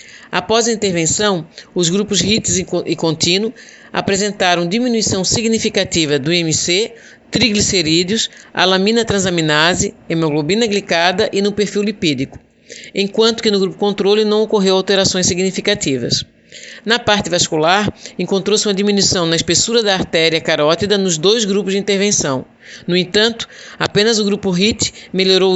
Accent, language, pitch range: Brazilian, Portuguese, 175-210 Hz